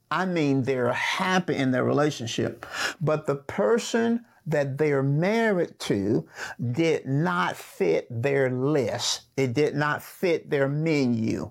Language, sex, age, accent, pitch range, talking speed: English, male, 50-69, American, 130-170 Hz, 130 wpm